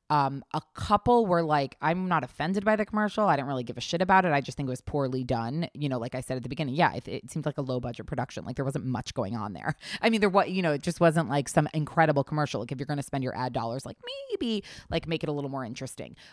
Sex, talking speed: female, 300 wpm